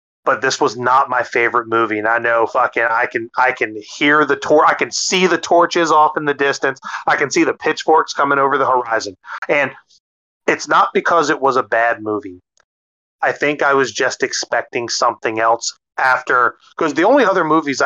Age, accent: 30-49, American